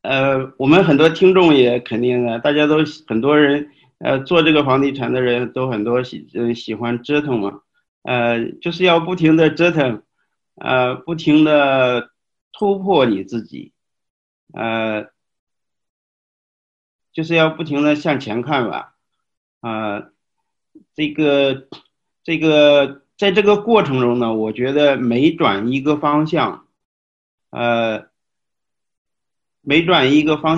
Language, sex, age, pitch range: Chinese, male, 50-69, 120-155 Hz